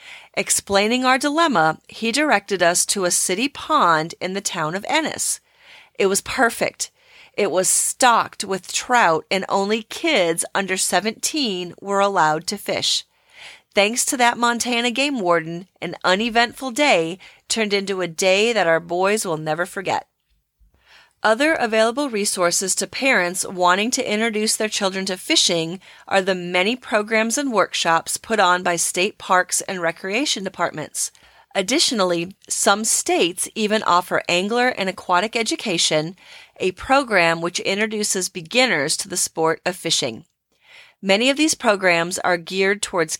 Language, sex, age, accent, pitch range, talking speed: English, female, 30-49, American, 180-240 Hz, 145 wpm